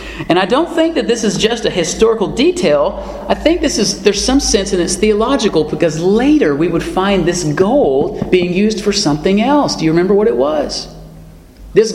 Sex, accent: male, American